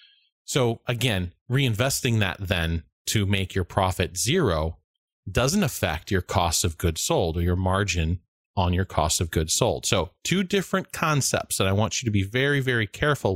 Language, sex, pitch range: English, male, 90-120 Hz